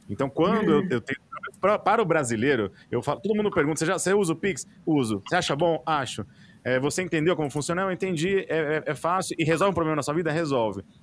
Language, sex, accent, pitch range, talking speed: Portuguese, male, Brazilian, 125-170 Hz, 235 wpm